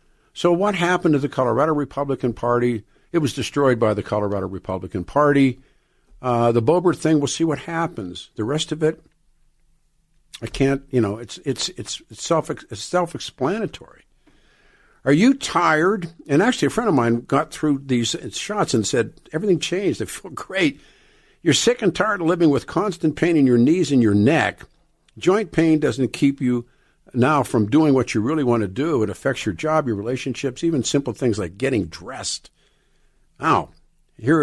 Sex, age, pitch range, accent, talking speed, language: male, 50-69, 120-165 Hz, American, 175 wpm, English